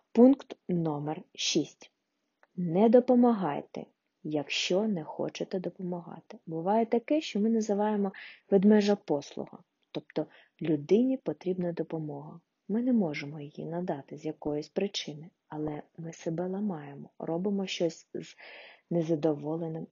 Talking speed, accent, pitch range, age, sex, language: 110 wpm, native, 160-210 Hz, 30-49, female, Ukrainian